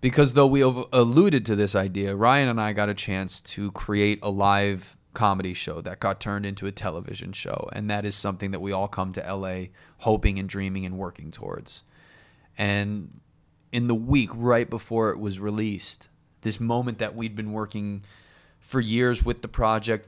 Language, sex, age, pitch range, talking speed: English, male, 20-39, 100-125 Hz, 185 wpm